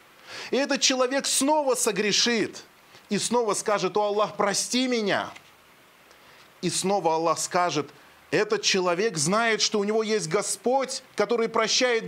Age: 30-49